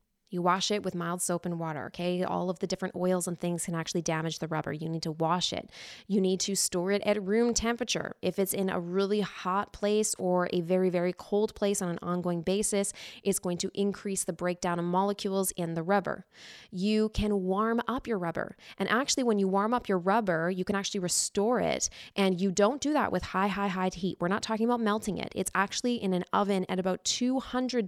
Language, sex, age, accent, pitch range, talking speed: English, female, 20-39, American, 180-210 Hz, 225 wpm